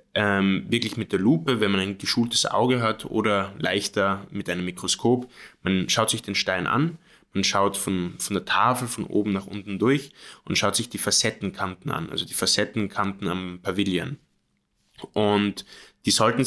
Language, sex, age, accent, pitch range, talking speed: German, male, 20-39, German, 95-120 Hz, 170 wpm